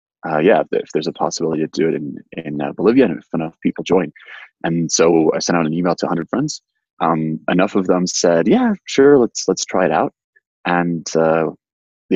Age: 20-39